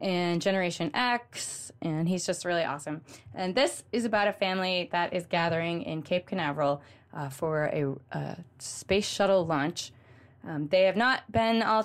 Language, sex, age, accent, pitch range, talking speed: English, female, 20-39, American, 140-185 Hz, 165 wpm